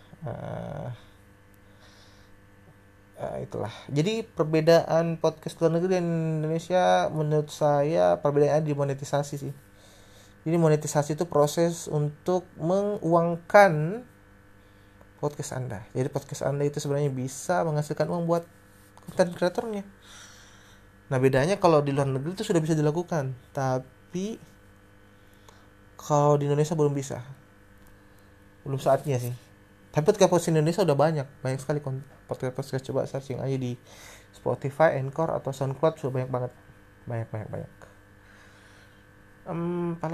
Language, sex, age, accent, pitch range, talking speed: Indonesian, male, 20-39, native, 105-160 Hz, 115 wpm